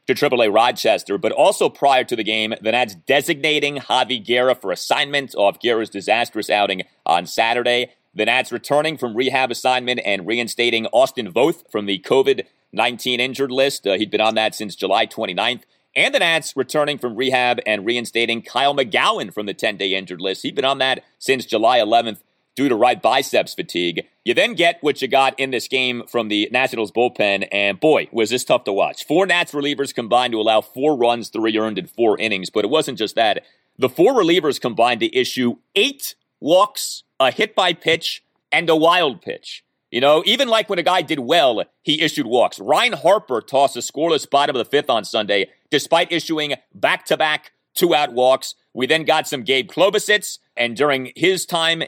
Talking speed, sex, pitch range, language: 190 wpm, male, 115-155 Hz, English